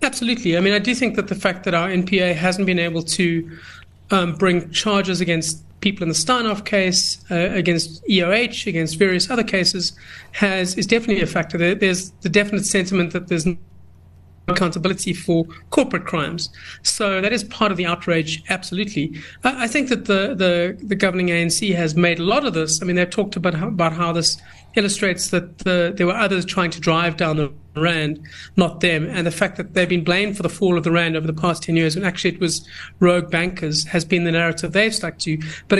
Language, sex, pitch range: English, male, 165-195 Hz